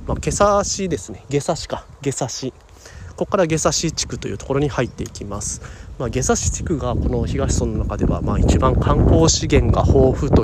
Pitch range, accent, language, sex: 95-130 Hz, native, Japanese, male